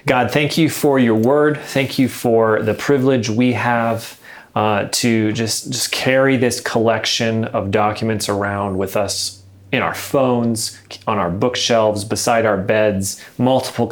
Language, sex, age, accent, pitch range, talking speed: English, male, 30-49, American, 100-120 Hz, 150 wpm